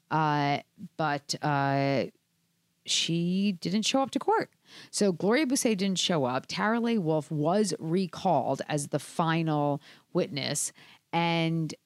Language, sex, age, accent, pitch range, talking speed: English, female, 40-59, American, 145-185 Hz, 125 wpm